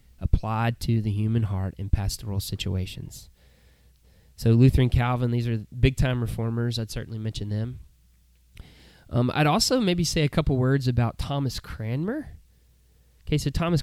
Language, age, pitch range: English, 20-39, 100-140 Hz